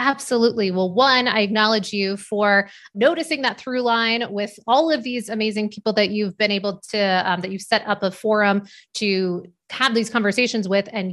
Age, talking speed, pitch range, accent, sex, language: 30-49, 190 wpm, 200-245 Hz, American, female, English